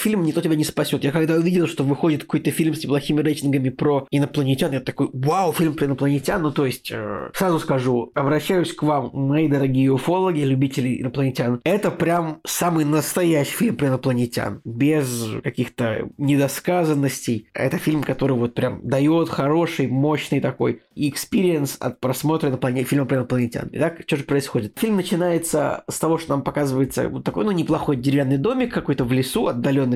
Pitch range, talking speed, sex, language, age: 130-160 Hz, 165 wpm, male, Russian, 20-39